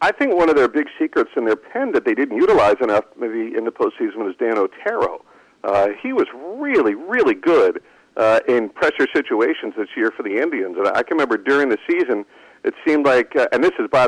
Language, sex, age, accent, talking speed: English, male, 50-69, American, 220 wpm